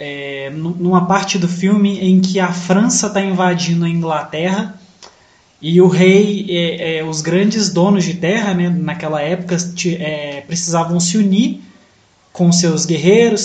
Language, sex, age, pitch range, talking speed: Portuguese, male, 20-39, 175-220 Hz, 130 wpm